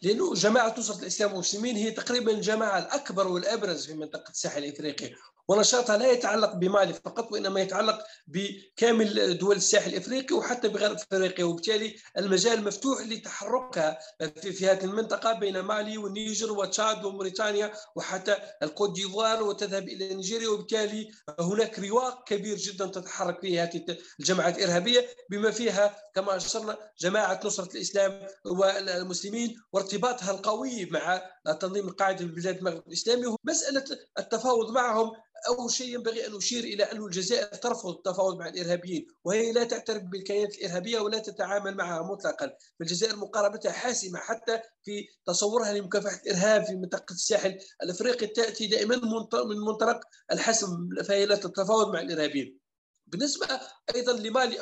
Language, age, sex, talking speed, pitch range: Arabic, 50-69, male, 130 wpm, 190-225 Hz